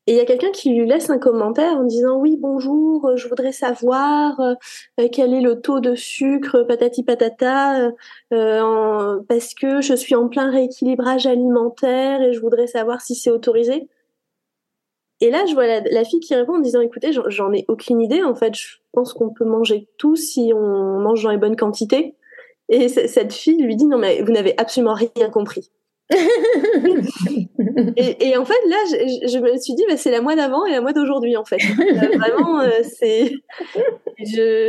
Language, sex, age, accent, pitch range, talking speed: French, female, 20-39, French, 230-290 Hz, 190 wpm